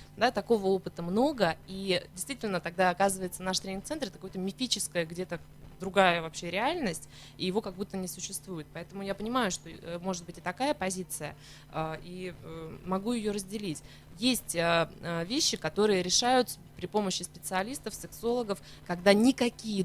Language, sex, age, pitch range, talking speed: Russian, female, 20-39, 175-230 Hz, 135 wpm